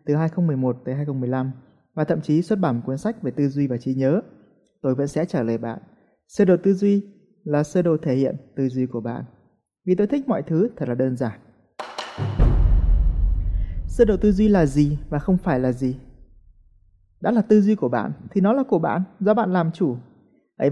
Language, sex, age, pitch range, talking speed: Vietnamese, male, 20-39, 130-190 Hz, 210 wpm